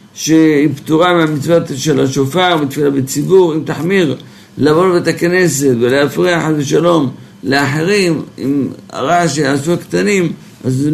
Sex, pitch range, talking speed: male, 145-170 Hz, 120 wpm